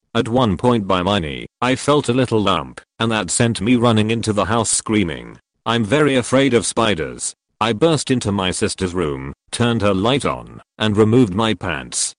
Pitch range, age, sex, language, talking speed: 100-120 Hz, 40-59, male, English, 190 wpm